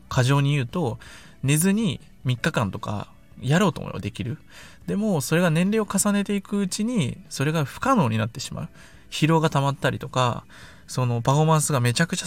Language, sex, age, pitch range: Japanese, male, 20-39, 115-175 Hz